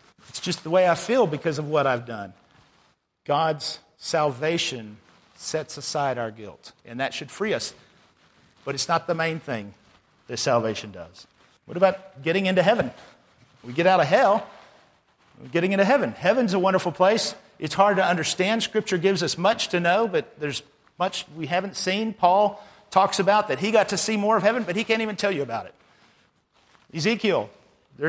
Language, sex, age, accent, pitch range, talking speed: English, male, 50-69, American, 140-200 Hz, 185 wpm